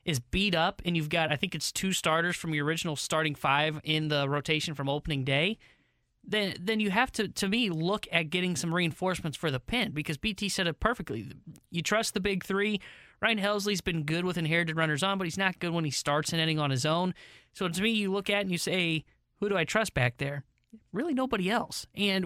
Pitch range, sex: 150-195 Hz, male